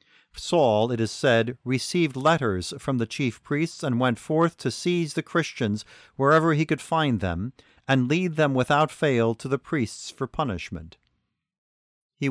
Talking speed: 160 wpm